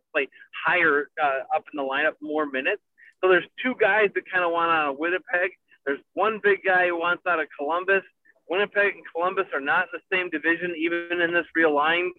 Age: 30-49